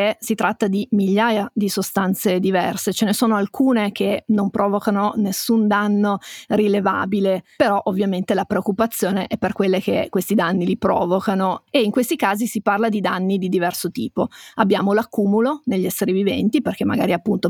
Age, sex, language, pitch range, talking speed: 30-49, female, Italian, 195-225 Hz, 165 wpm